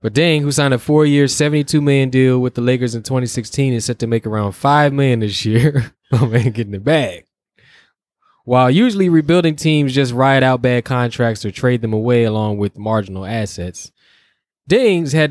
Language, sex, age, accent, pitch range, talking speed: English, male, 10-29, American, 110-130 Hz, 185 wpm